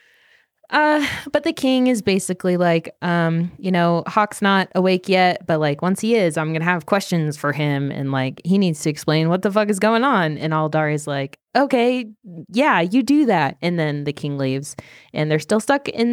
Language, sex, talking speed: English, female, 210 wpm